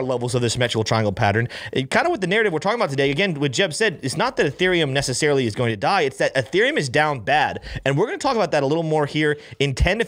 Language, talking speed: English, 285 wpm